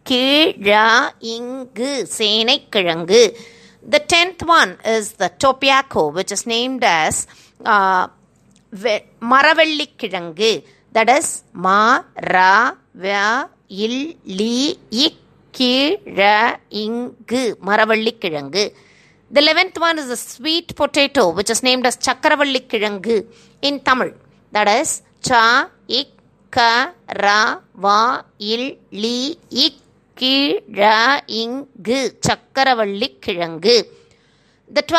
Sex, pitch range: female, 215-280 Hz